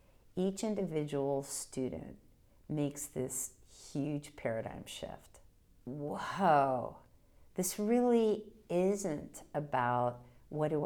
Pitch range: 135-195 Hz